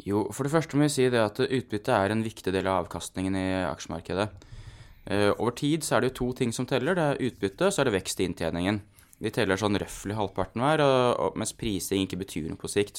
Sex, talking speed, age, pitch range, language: male, 250 wpm, 20-39, 95-120 Hz, English